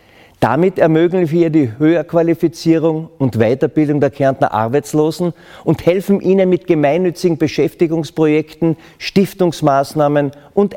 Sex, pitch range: male, 135-170 Hz